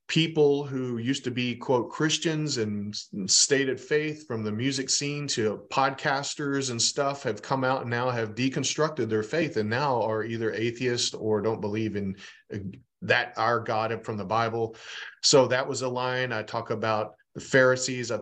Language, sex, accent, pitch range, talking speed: English, male, American, 115-135 Hz, 175 wpm